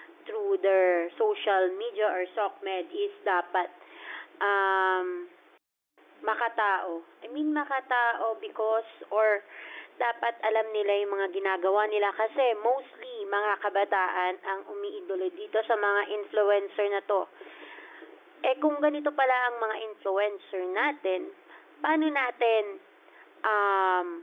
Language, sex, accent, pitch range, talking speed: Filipino, female, native, 195-270 Hz, 115 wpm